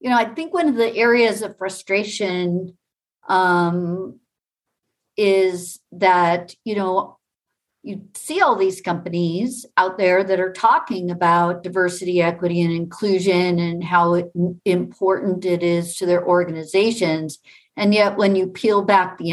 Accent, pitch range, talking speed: American, 175-210 Hz, 140 wpm